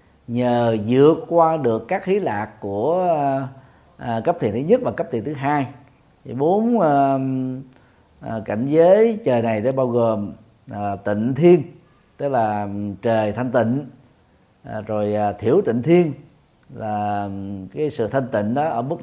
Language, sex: Vietnamese, male